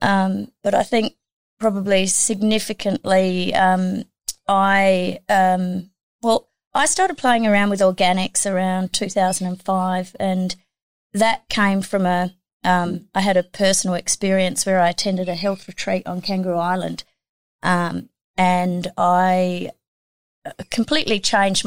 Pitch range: 180-200 Hz